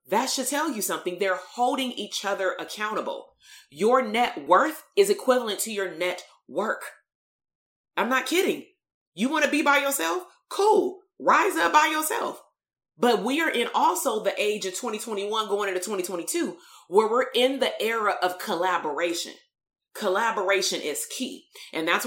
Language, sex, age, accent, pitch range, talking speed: English, female, 30-49, American, 195-285 Hz, 155 wpm